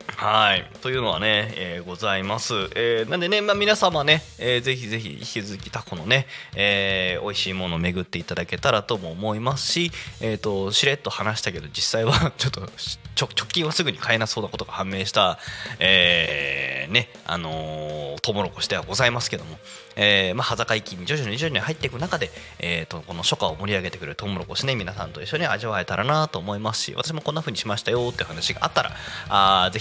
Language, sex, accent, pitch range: Japanese, male, native, 95-145 Hz